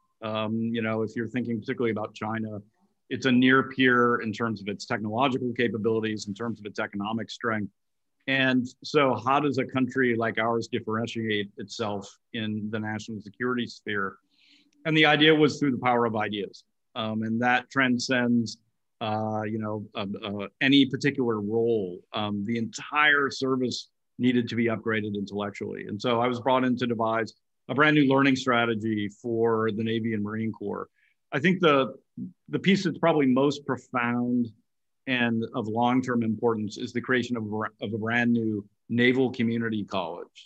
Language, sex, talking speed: English, male, 170 wpm